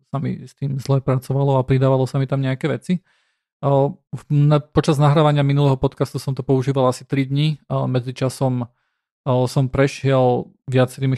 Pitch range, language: 130-145 Hz, Slovak